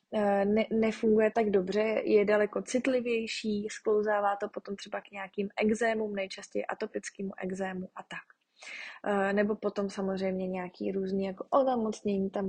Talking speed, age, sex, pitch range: 125 wpm, 20-39, female, 195-225 Hz